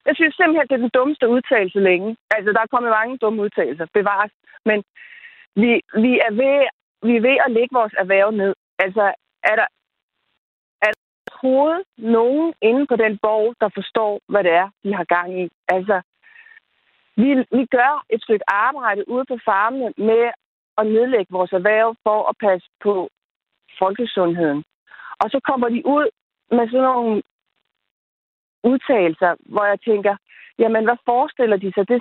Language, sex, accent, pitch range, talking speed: Danish, female, native, 215-265 Hz, 165 wpm